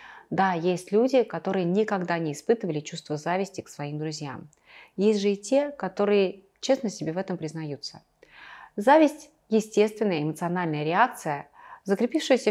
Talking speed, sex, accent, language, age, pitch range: 130 wpm, female, native, Russian, 30-49, 170-225 Hz